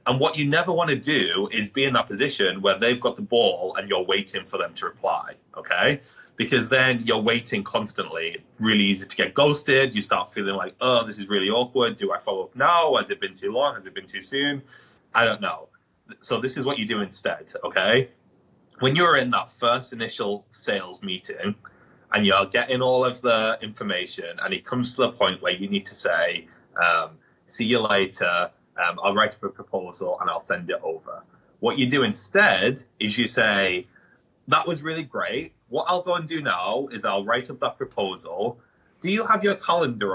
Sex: male